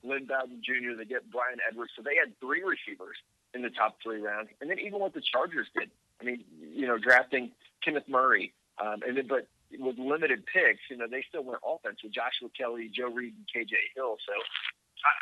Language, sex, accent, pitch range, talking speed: English, male, American, 115-140 Hz, 215 wpm